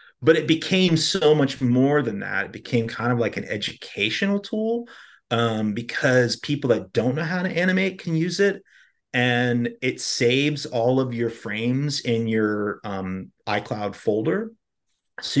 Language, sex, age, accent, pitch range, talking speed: English, male, 30-49, American, 110-130 Hz, 160 wpm